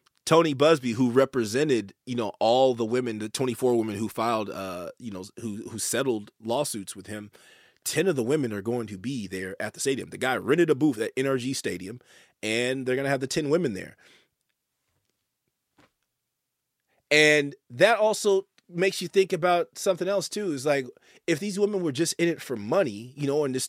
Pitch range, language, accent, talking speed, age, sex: 120-195 Hz, English, American, 195 wpm, 30-49, male